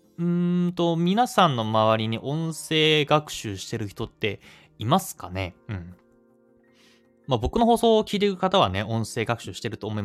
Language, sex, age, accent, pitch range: Japanese, male, 20-39, native, 100-150 Hz